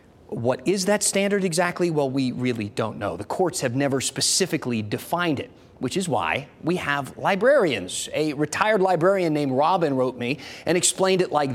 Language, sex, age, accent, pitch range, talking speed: English, male, 30-49, American, 135-190 Hz, 175 wpm